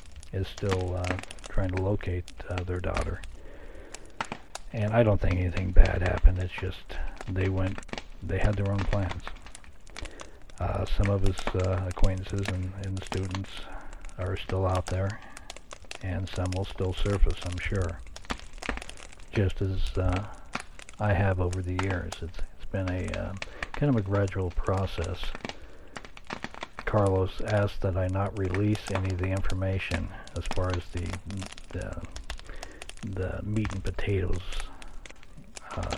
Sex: male